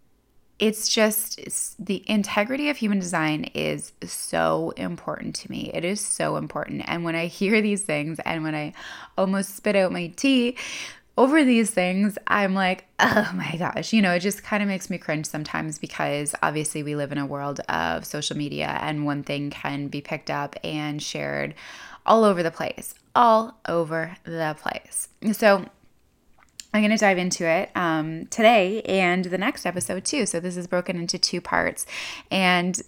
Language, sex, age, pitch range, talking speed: English, female, 20-39, 155-205 Hz, 175 wpm